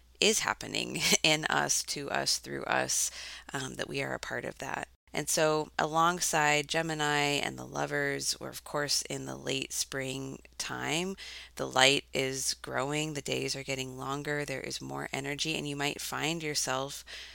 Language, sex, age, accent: English, female, 30-49, American